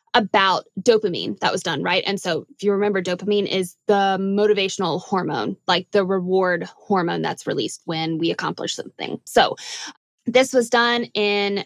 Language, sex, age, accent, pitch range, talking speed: English, female, 20-39, American, 195-245 Hz, 160 wpm